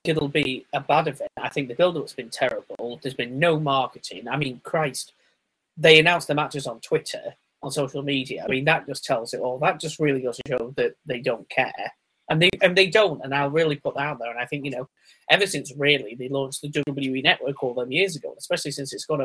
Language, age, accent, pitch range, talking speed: English, 30-49, British, 130-160 Hz, 240 wpm